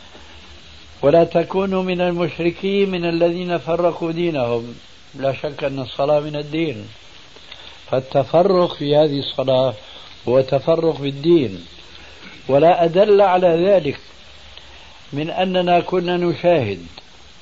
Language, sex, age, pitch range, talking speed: Arabic, male, 70-89, 120-165 Hz, 100 wpm